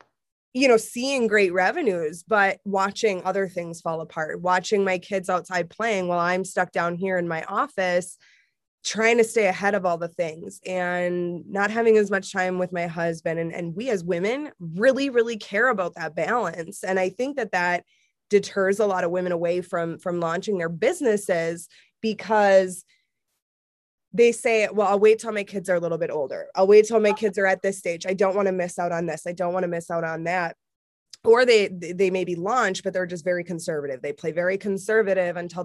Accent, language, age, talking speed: American, English, 20-39, 210 wpm